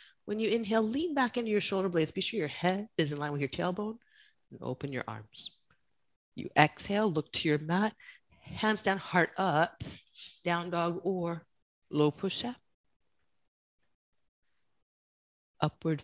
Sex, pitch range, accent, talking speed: female, 140-195 Hz, American, 150 wpm